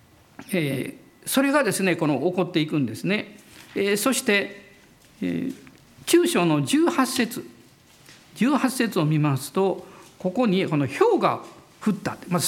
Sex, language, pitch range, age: male, Japanese, 150-240 Hz, 50-69